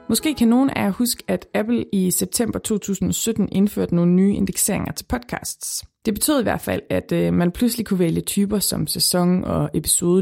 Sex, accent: female, native